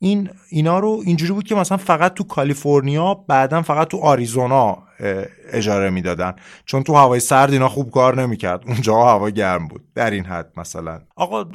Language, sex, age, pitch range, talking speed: Persian, male, 30-49, 105-165 Hz, 180 wpm